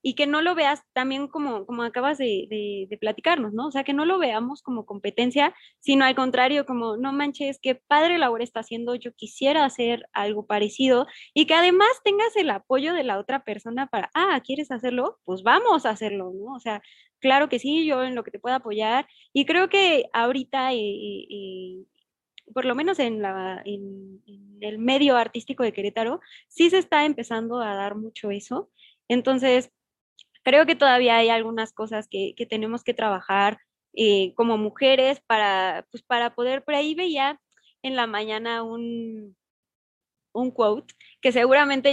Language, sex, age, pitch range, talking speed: Spanish, female, 20-39, 215-275 Hz, 175 wpm